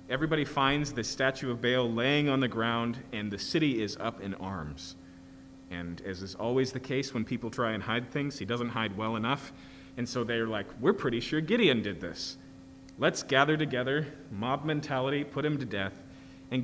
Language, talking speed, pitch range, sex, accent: English, 195 wpm, 90-145 Hz, male, American